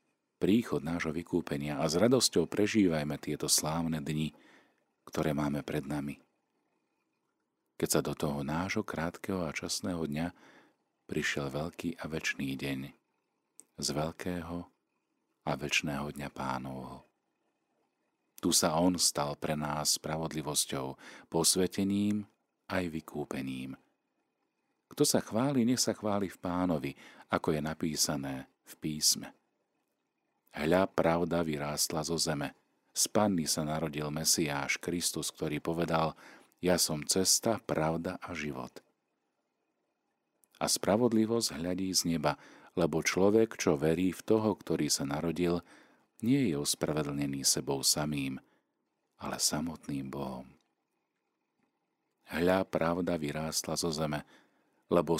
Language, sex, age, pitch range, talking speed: Slovak, male, 40-59, 75-85 Hz, 110 wpm